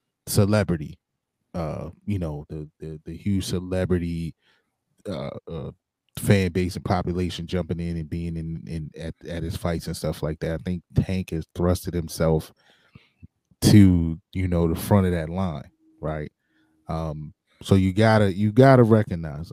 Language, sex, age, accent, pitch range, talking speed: English, male, 30-49, American, 85-110 Hz, 155 wpm